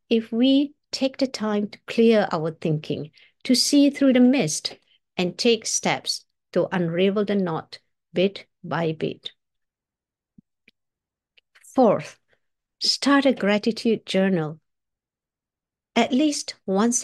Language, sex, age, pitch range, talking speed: English, female, 60-79, 185-250 Hz, 115 wpm